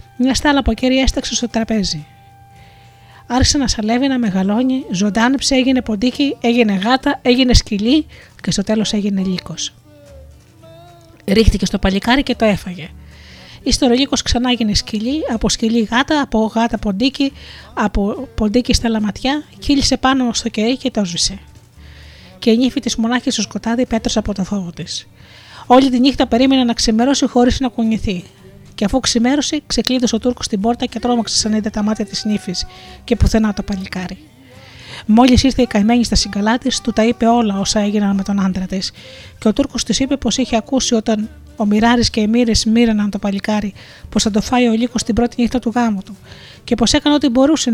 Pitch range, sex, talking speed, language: 200-245 Hz, female, 180 wpm, Greek